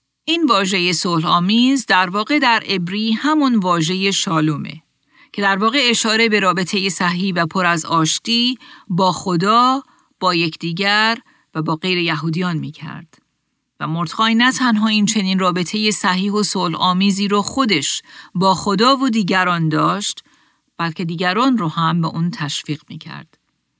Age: 40-59